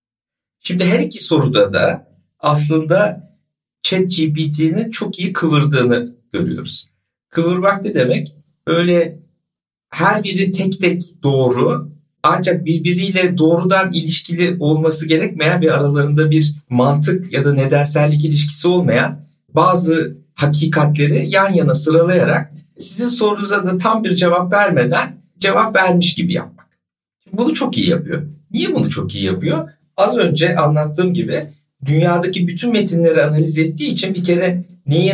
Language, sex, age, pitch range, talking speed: Turkish, male, 60-79, 150-180 Hz, 125 wpm